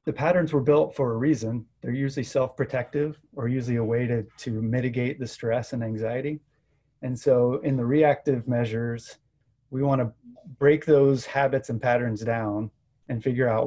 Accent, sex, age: American, male, 30-49